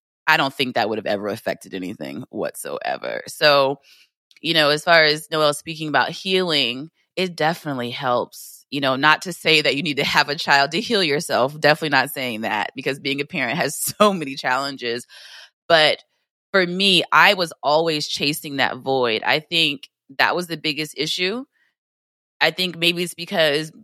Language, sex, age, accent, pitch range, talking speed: English, female, 20-39, American, 145-175 Hz, 180 wpm